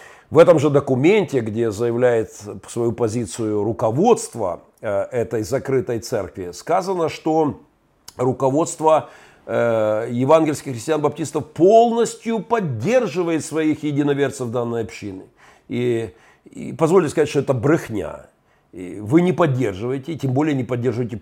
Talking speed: 110 wpm